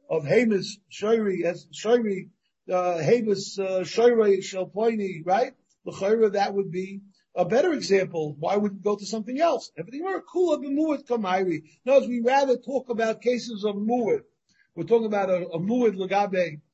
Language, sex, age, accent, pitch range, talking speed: English, male, 50-69, American, 175-240 Hz, 170 wpm